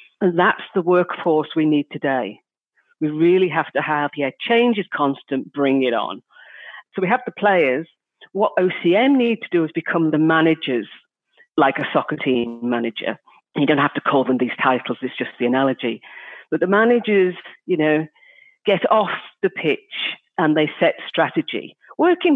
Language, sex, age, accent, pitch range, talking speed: English, female, 50-69, British, 140-180 Hz, 170 wpm